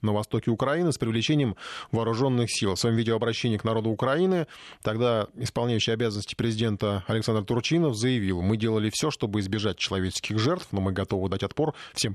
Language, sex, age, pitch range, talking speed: Russian, male, 20-39, 105-135 Hz, 165 wpm